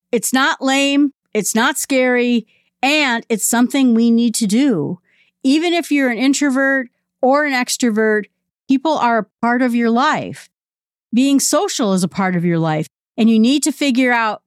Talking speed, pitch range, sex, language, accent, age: 175 wpm, 210-290 Hz, female, English, American, 50-69